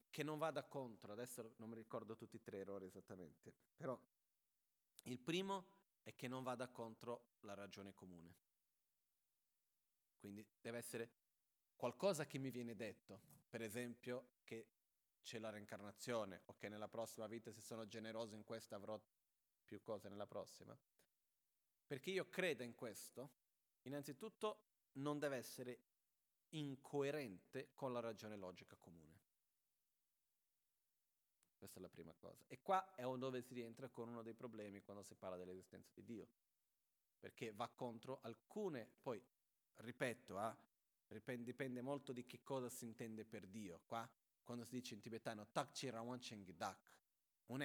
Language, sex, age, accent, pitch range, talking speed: Italian, male, 30-49, native, 110-135 Hz, 140 wpm